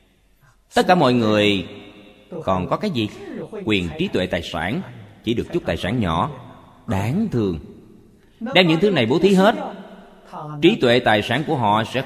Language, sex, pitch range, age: Vietnamese, male, 105-155 Hz, 20-39